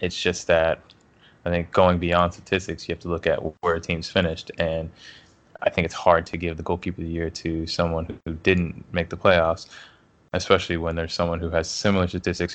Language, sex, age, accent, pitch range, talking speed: English, male, 20-39, American, 85-95 Hz, 210 wpm